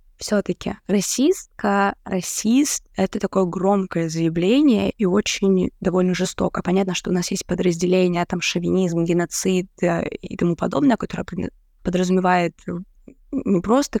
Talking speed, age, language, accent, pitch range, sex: 120 wpm, 20-39, Russian, native, 180-205 Hz, female